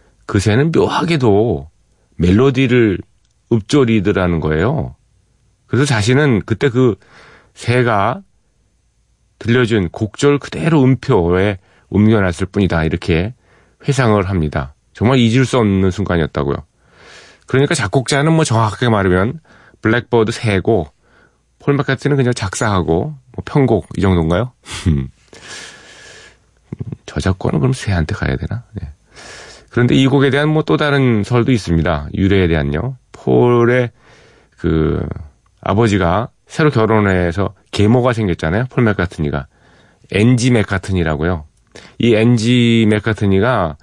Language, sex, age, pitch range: Korean, male, 40-59, 90-125 Hz